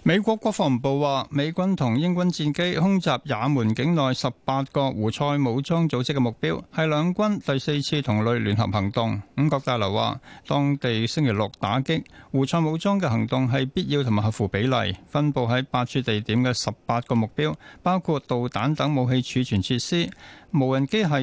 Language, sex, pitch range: Chinese, male, 115-150 Hz